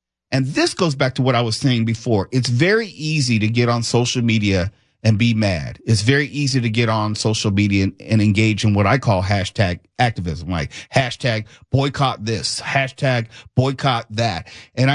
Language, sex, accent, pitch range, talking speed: English, male, American, 115-150 Hz, 180 wpm